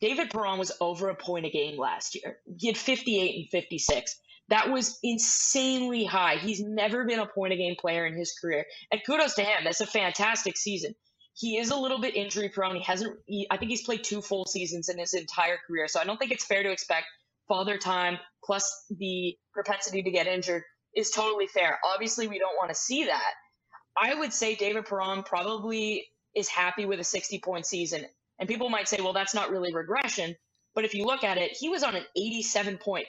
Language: English